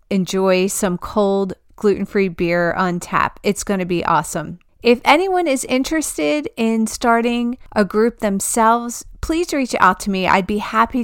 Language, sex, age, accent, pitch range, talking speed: English, female, 40-59, American, 185-240 Hz, 150 wpm